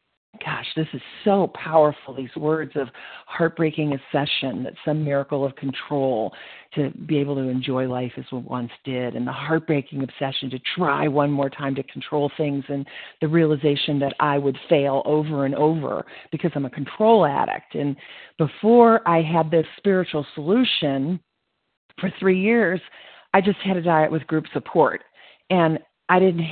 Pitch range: 140-160 Hz